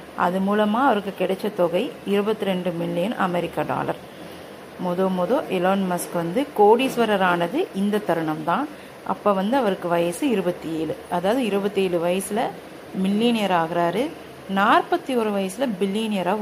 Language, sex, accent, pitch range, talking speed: Tamil, female, native, 175-220 Hz, 125 wpm